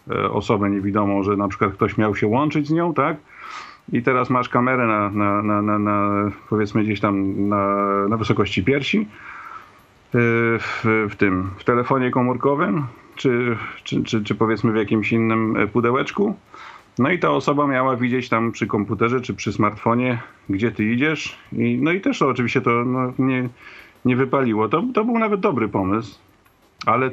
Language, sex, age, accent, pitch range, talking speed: Polish, male, 40-59, native, 110-140 Hz, 170 wpm